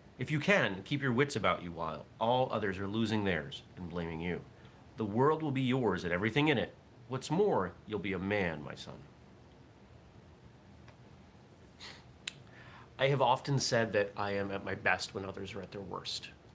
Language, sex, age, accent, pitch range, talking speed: English, male, 30-49, American, 95-125 Hz, 180 wpm